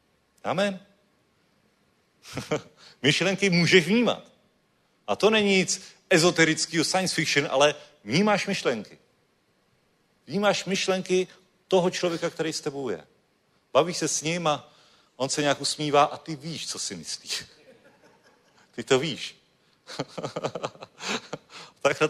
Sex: male